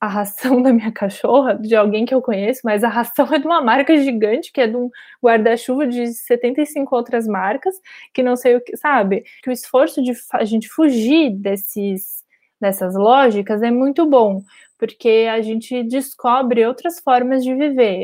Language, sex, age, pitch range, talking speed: Portuguese, female, 20-39, 230-270 Hz, 175 wpm